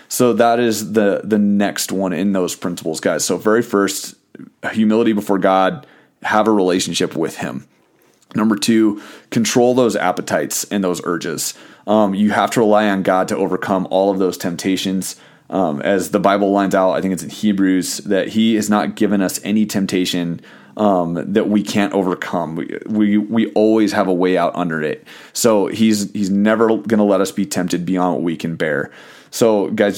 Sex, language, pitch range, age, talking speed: male, English, 95-110 Hz, 30-49, 190 wpm